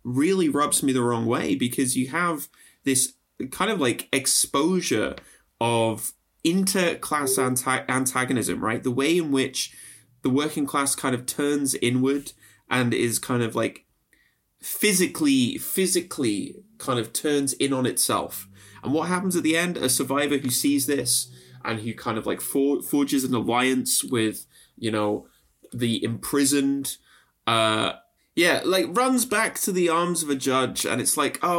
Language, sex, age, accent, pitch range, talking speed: English, male, 20-39, British, 125-175 Hz, 160 wpm